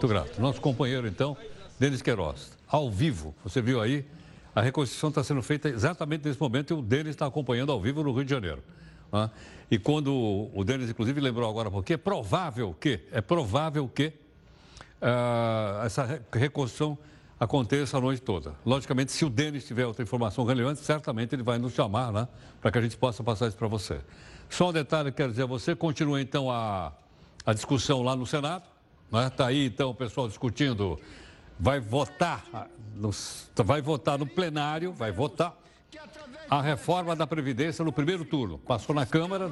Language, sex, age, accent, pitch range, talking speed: Portuguese, male, 60-79, Brazilian, 115-150 Hz, 175 wpm